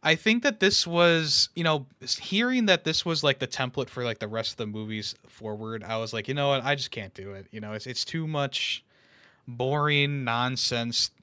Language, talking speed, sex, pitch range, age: English, 220 wpm, male, 115-150 Hz, 20-39